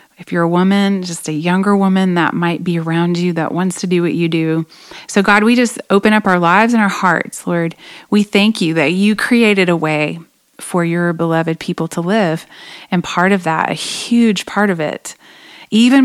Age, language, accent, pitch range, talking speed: 30-49, English, American, 170-210 Hz, 210 wpm